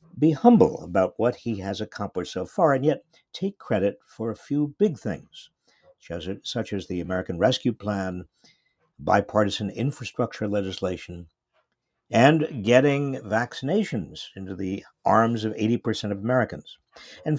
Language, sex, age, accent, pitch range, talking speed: English, male, 50-69, American, 95-140 Hz, 130 wpm